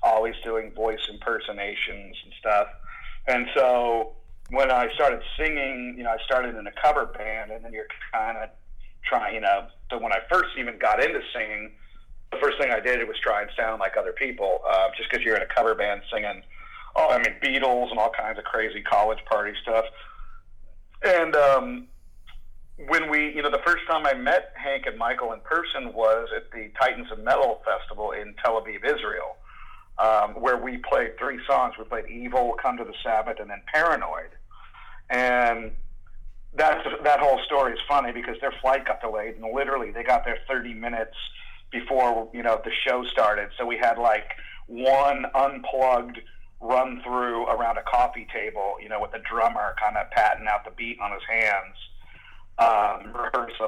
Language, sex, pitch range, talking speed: English, male, 110-135 Hz, 185 wpm